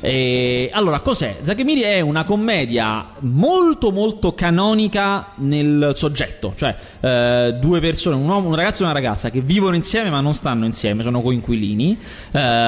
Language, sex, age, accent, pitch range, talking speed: Italian, male, 20-39, native, 120-185 Hz, 145 wpm